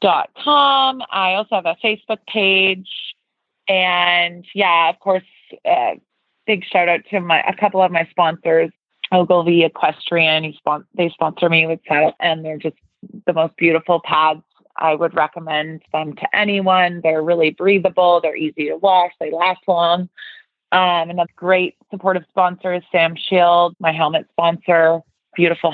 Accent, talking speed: American, 160 wpm